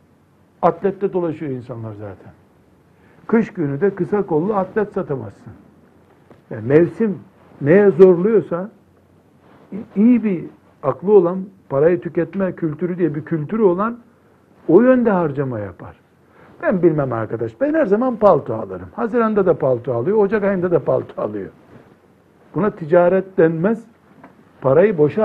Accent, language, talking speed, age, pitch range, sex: native, Turkish, 125 wpm, 60-79, 140-200 Hz, male